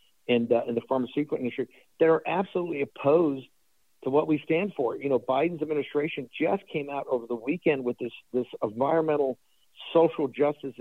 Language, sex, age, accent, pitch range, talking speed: English, male, 60-79, American, 135-165 Hz, 170 wpm